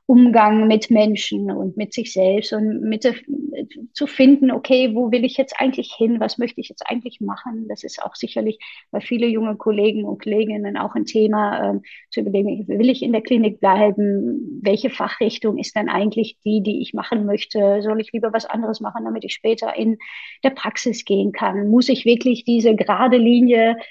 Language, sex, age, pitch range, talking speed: German, female, 30-49, 215-245 Hz, 185 wpm